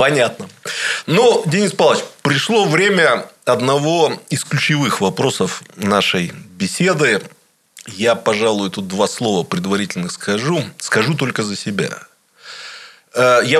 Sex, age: male, 20-39